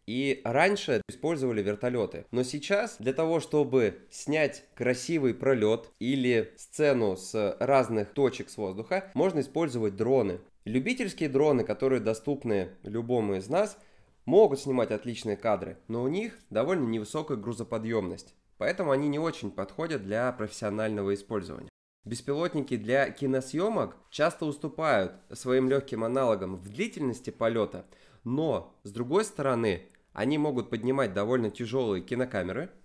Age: 20-39